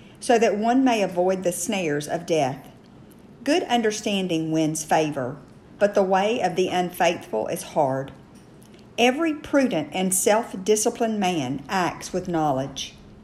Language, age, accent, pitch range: English, 50-69, American, 165-220 Hz